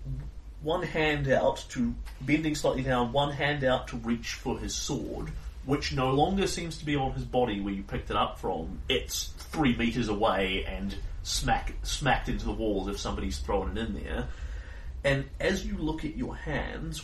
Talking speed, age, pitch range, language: 185 wpm, 30-49, 85-130 Hz, English